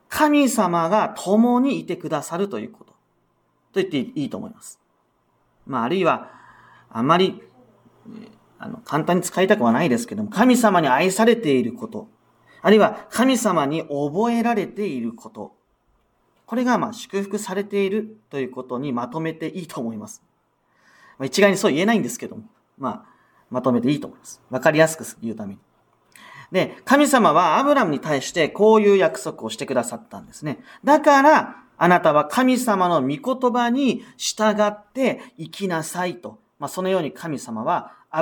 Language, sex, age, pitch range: Japanese, male, 40-59, 155-235 Hz